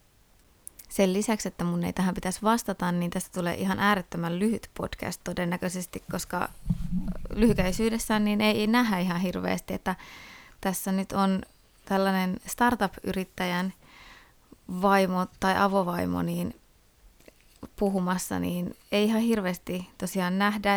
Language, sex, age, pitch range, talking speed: Finnish, female, 20-39, 175-200 Hz, 115 wpm